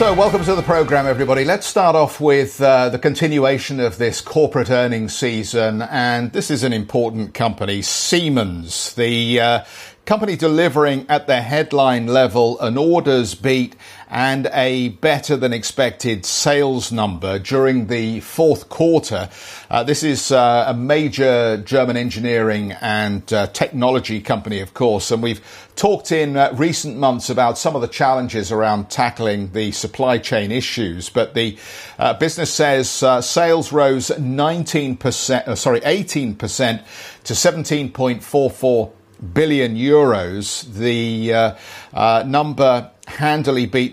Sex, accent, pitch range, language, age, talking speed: male, British, 110-145 Hz, English, 50-69, 140 wpm